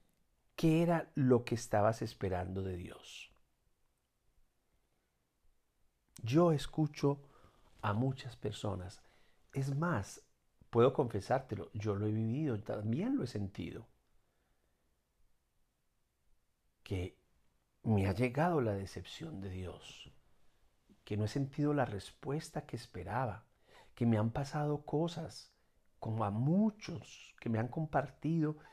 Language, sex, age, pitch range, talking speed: Spanish, male, 50-69, 95-130 Hz, 110 wpm